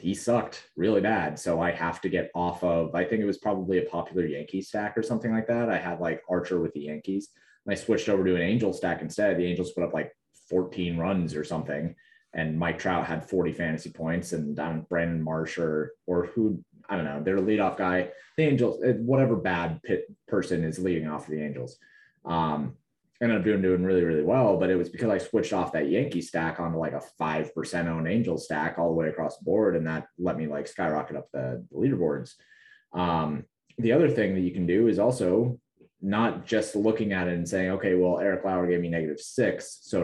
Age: 20-39